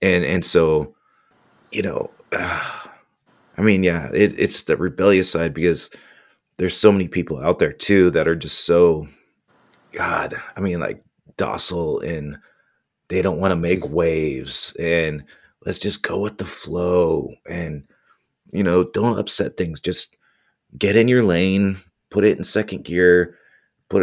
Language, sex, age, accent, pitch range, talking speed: English, male, 30-49, American, 85-100 Hz, 150 wpm